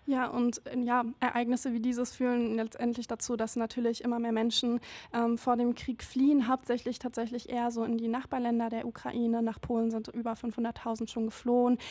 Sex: female